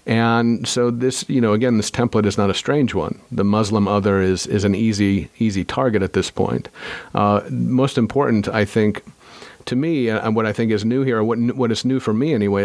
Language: English